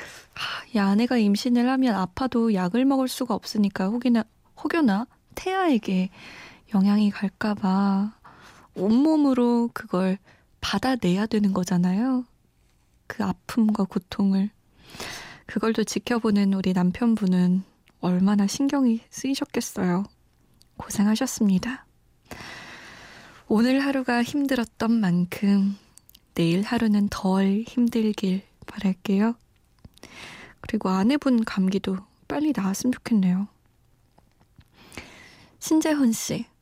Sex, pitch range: female, 195-245 Hz